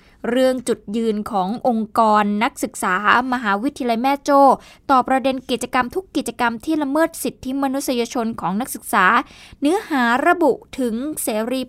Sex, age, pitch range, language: female, 20-39, 215-280 Hz, Thai